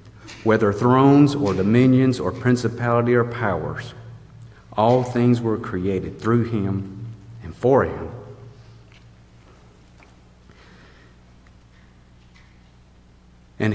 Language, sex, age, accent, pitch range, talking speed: English, male, 50-69, American, 85-115 Hz, 80 wpm